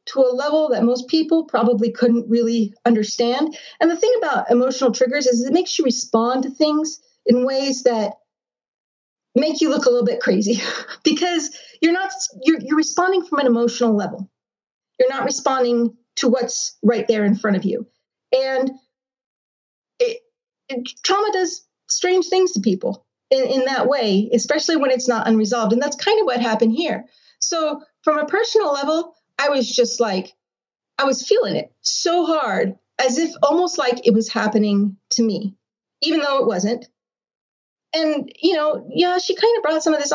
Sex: female